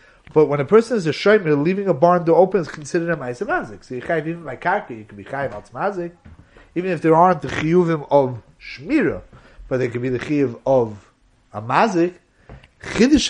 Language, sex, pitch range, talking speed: English, male, 145-205 Hz, 205 wpm